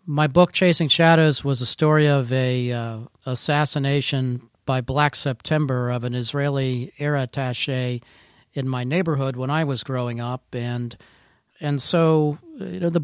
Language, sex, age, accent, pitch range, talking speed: English, male, 40-59, American, 130-155 Hz, 140 wpm